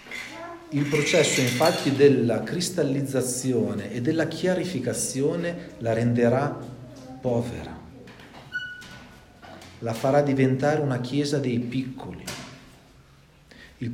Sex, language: male, Italian